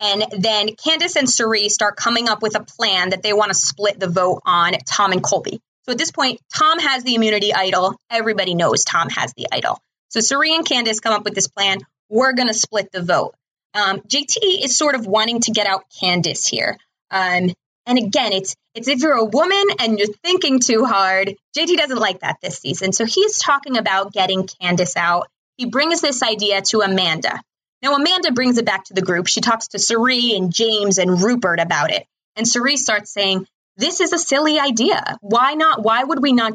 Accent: American